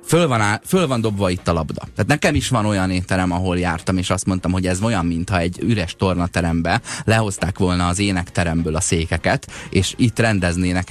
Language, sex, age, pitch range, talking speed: Hungarian, male, 20-39, 90-120 Hz, 205 wpm